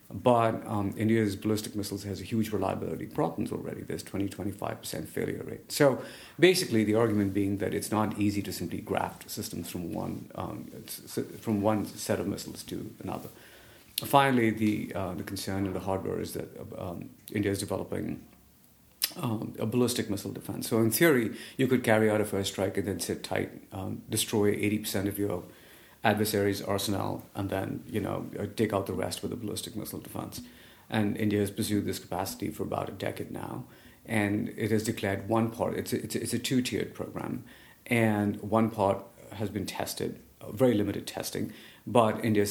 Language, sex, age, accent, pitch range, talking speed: English, male, 50-69, Indian, 95-110 Hz, 185 wpm